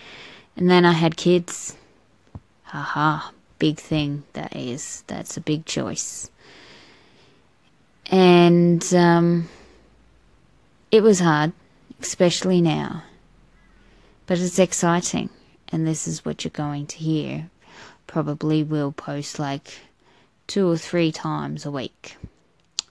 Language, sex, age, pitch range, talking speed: English, female, 20-39, 145-175 Hz, 110 wpm